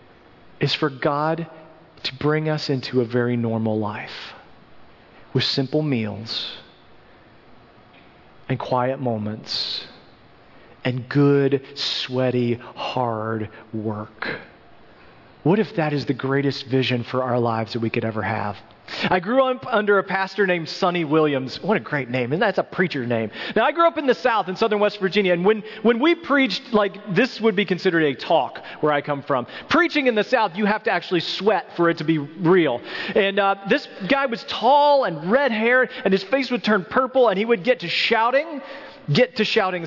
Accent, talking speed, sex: American, 180 wpm, male